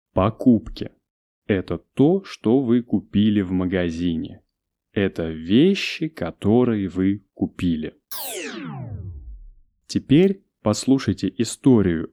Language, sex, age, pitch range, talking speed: Russian, male, 20-39, 90-120 Hz, 80 wpm